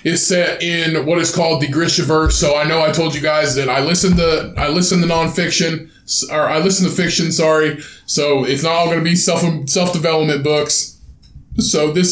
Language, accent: English, American